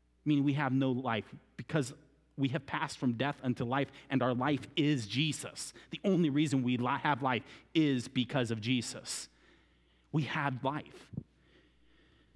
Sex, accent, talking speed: male, American, 150 wpm